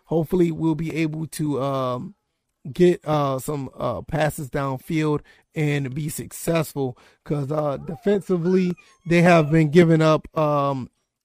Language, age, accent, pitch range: English, 30-49, American, 155-195 Hz